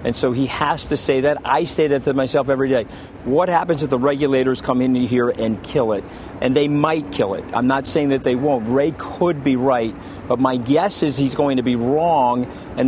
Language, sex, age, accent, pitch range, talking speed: English, male, 50-69, American, 125-155 Hz, 235 wpm